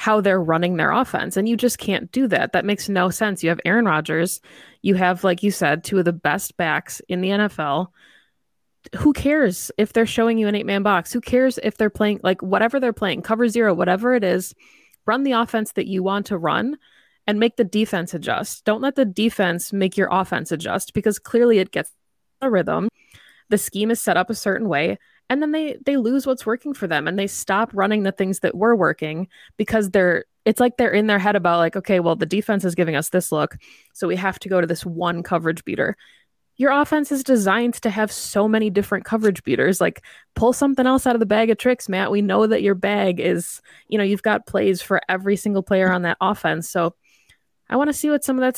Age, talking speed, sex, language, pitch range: 20-39, 230 wpm, female, English, 185-230 Hz